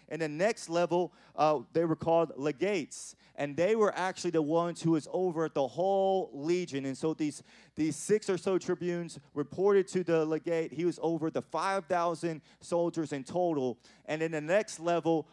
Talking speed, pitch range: 185 wpm, 155-180 Hz